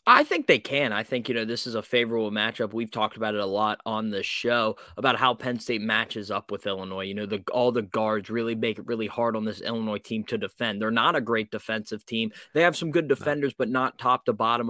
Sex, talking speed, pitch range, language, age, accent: male, 255 wpm, 110-125 Hz, English, 20-39, American